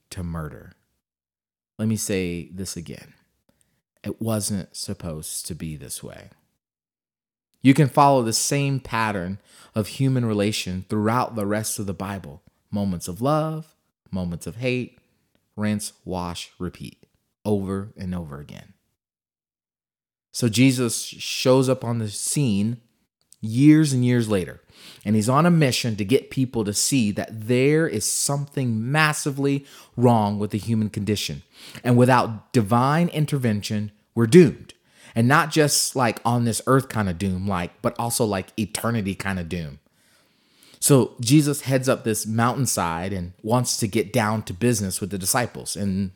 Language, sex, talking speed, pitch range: English, male, 150 wpm, 100-130 Hz